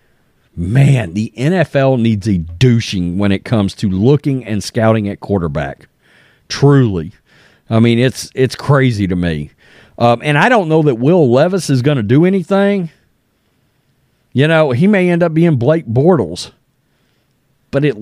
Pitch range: 115-170 Hz